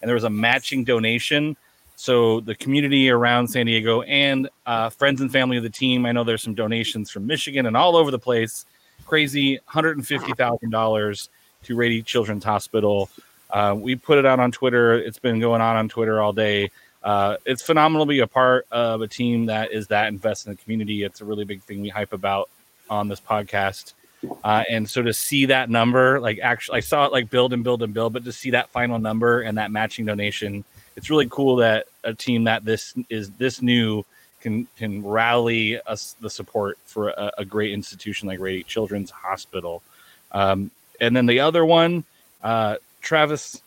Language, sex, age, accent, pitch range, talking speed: English, male, 30-49, American, 105-125 Hz, 195 wpm